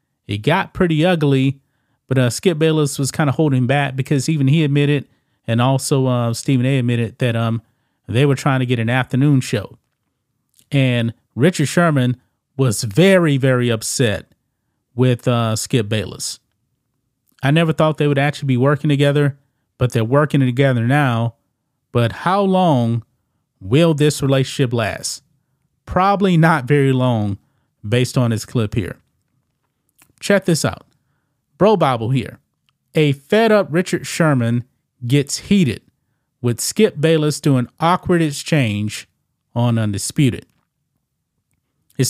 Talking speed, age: 140 wpm, 30-49